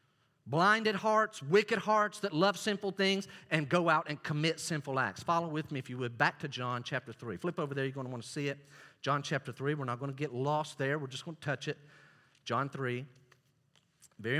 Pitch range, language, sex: 135-165 Hz, English, male